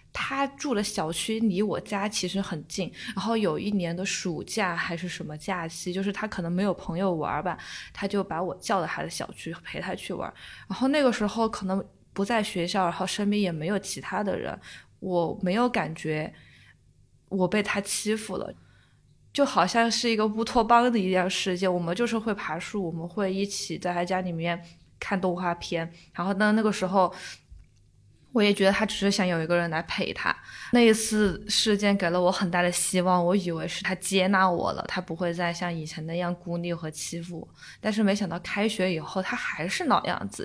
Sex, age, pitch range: female, 20-39, 175-210 Hz